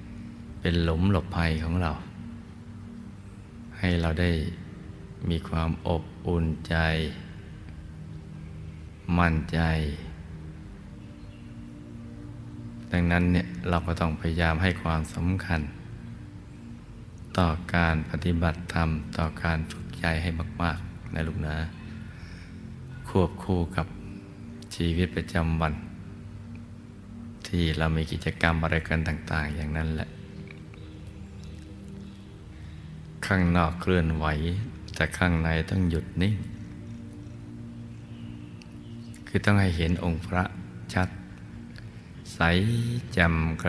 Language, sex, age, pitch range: Thai, male, 20-39, 80-100 Hz